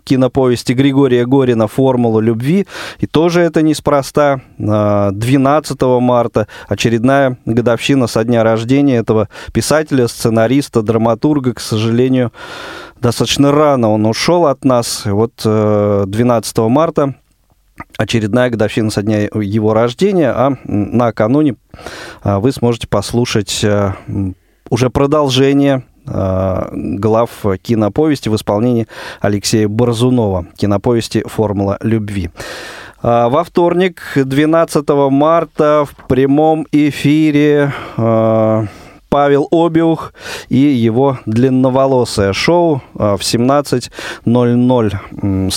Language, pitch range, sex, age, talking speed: Russian, 110-140 Hz, male, 20-39, 90 wpm